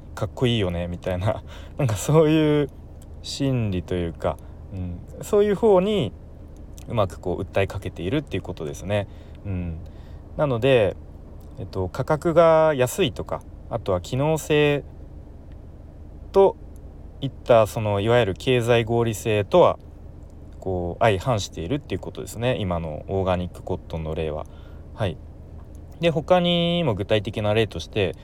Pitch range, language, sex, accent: 80-130 Hz, Japanese, male, native